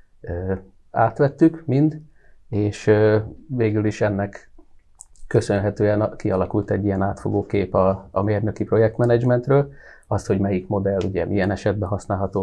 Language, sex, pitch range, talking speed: Hungarian, male, 95-115 Hz, 115 wpm